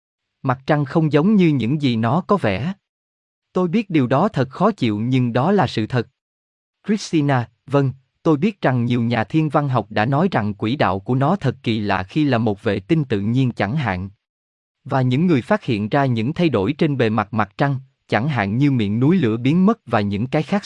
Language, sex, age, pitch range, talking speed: Vietnamese, male, 20-39, 110-155 Hz, 225 wpm